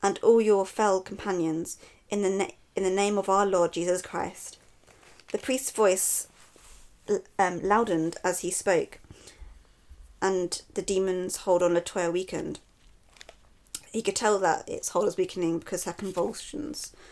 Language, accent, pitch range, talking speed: English, British, 180-230 Hz, 150 wpm